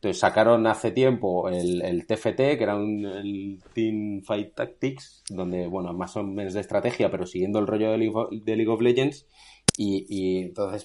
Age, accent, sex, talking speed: 30-49, Spanish, male, 175 wpm